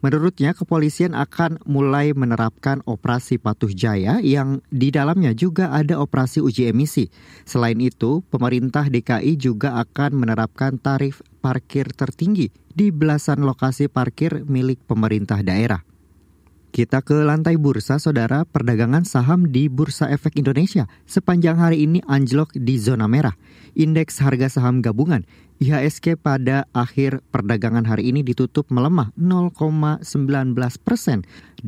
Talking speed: 120 wpm